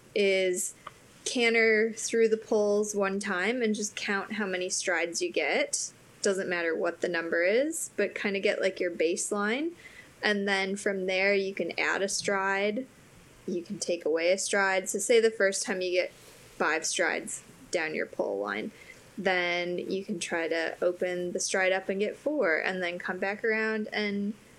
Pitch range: 185-220 Hz